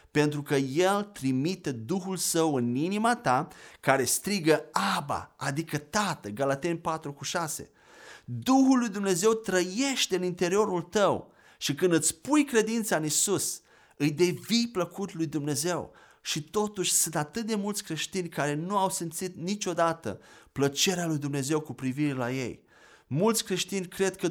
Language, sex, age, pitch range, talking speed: Romanian, male, 30-49, 150-190 Hz, 145 wpm